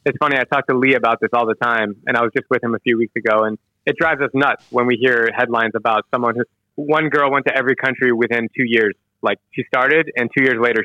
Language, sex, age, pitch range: English, male, 20-39, 110-135 Hz